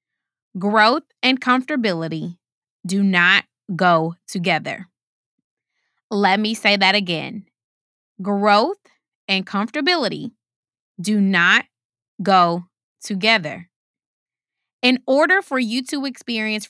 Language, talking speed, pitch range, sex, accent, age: English, 90 wpm, 185-250 Hz, female, American, 20-39